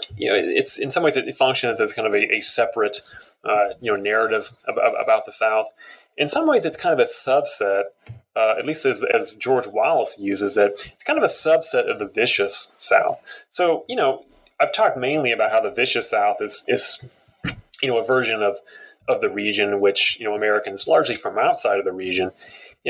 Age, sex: 30-49, male